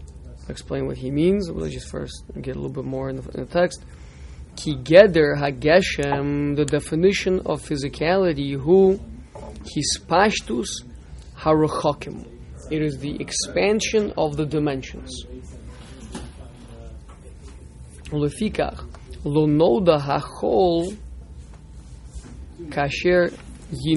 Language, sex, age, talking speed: English, male, 20-39, 80 wpm